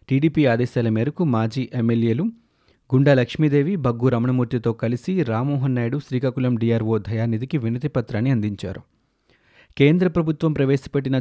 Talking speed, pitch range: 105 wpm, 115-140 Hz